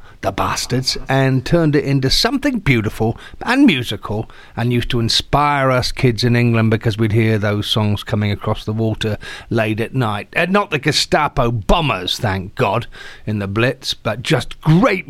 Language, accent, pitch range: English, British, 110-135 Hz